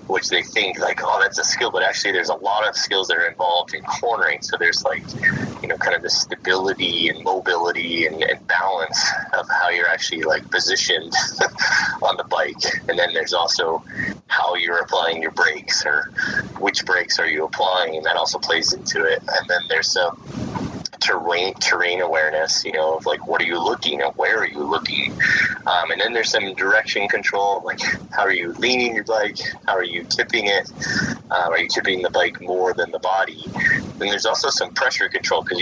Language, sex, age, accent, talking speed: English, male, 30-49, American, 200 wpm